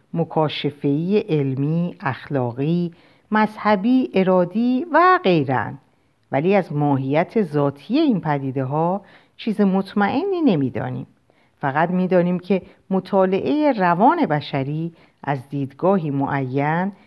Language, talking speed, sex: Persian, 100 wpm, female